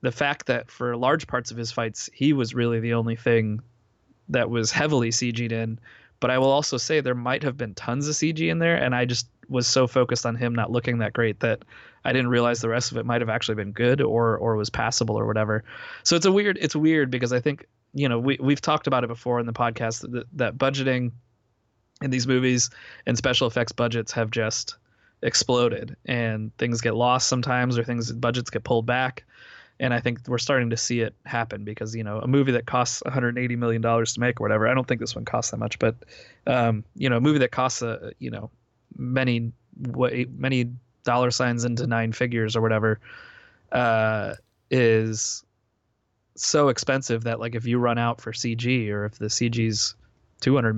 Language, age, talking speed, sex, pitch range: English, 20-39, 210 wpm, male, 115-125 Hz